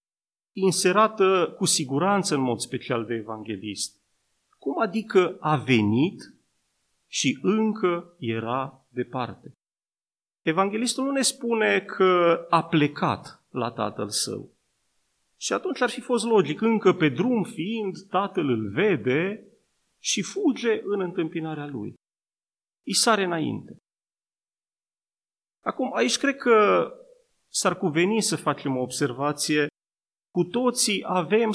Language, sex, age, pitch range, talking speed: Romanian, male, 40-59, 145-210 Hz, 115 wpm